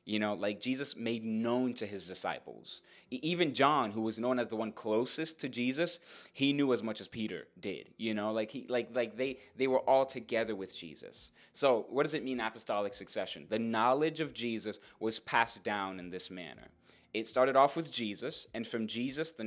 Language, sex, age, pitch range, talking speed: English, male, 20-39, 110-130 Hz, 205 wpm